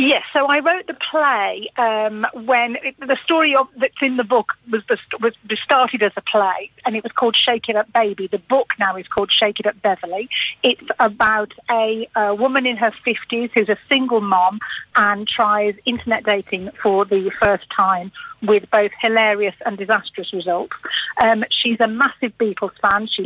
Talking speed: 180 wpm